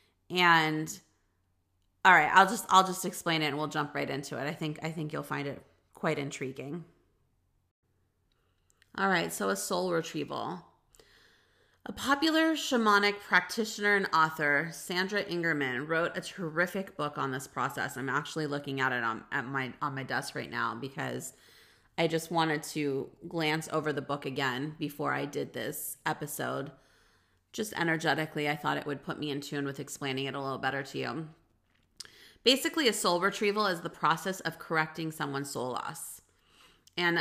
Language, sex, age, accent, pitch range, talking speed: English, female, 30-49, American, 145-185 Hz, 170 wpm